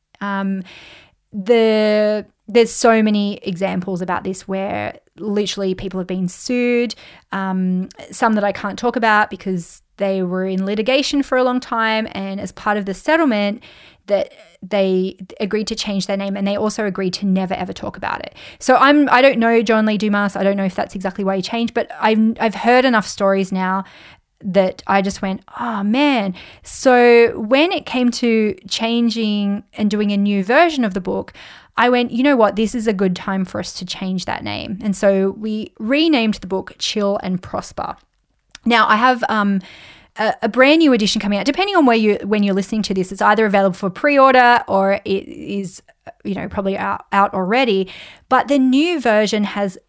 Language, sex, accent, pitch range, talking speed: English, female, Australian, 195-235 Hz, 195 wpm